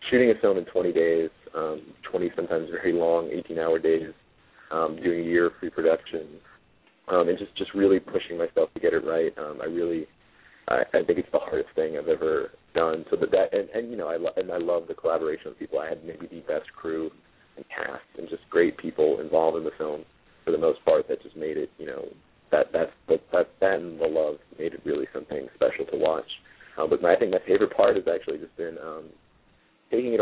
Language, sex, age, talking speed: English, male, 30-49, 235 wpm